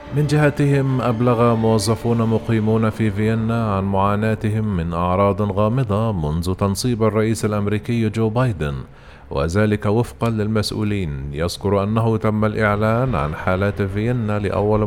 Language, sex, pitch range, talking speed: Arabic, male, 95-115 Hz, 115 wpm